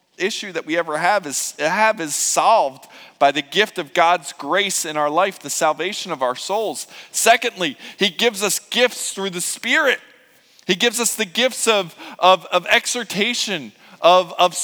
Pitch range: 150-220 Hz